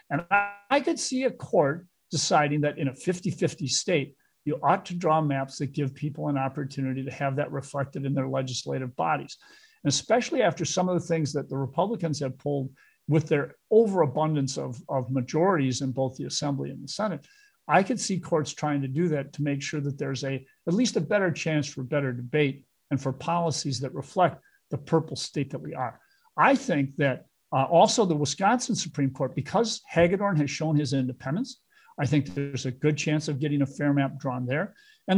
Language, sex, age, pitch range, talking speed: English, male, 50-69, 135-170 Hz, 200 wpm